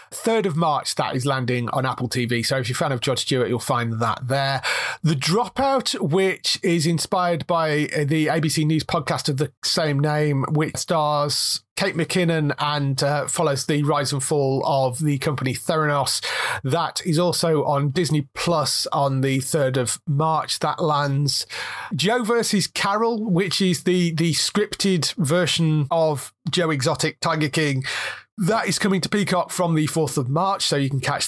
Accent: British